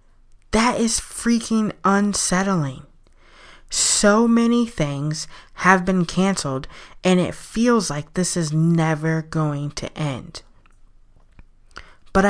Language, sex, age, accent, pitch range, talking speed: English, female, 20-39, American, 150-210 Hz, 100 wpm